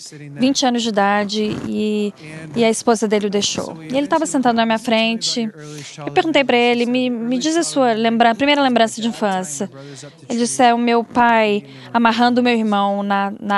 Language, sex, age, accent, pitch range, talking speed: Portuguese, female, 10-29, Brazilian, 195-245 Hz, 195 wpm